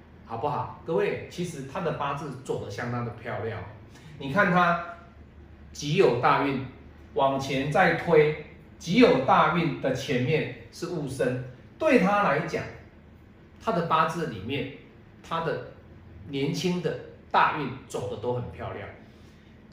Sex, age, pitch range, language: male, 40-59, 120-175 Hz, Chinese